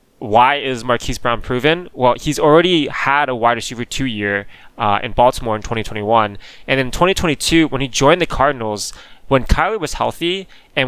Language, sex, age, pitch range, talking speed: English, male, 20-39, 115-145 Hz, 175 wpm